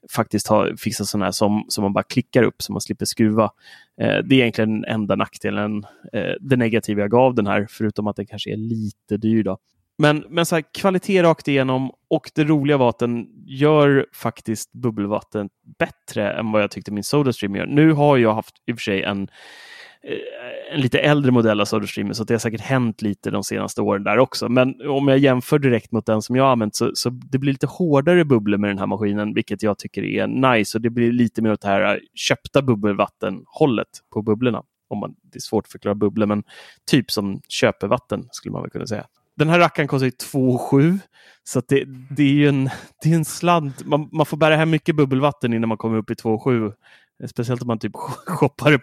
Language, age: Swedish, 30-49